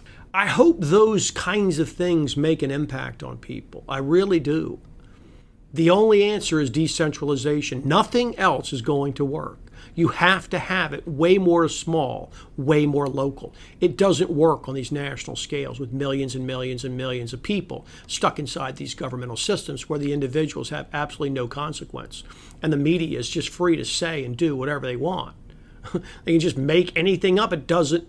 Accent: American